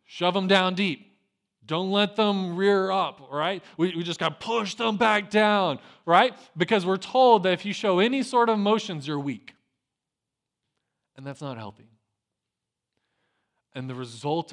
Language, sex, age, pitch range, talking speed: English, male, 20-39, 110-140 Hz, 165 wpm